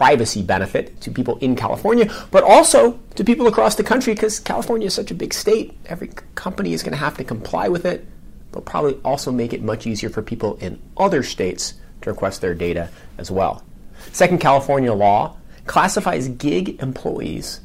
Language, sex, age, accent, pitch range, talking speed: English, male, 30-49, American, 105-175 Hz, 185 wpm